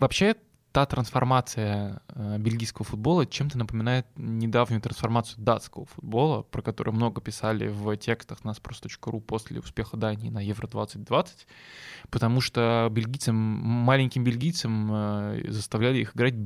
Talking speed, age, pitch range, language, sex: 115 wpm, 20-39, 110-125 Hz, Russian, male